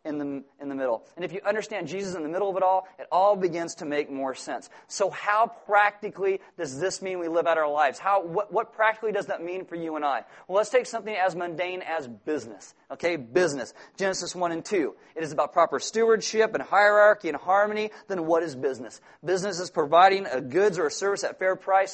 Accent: American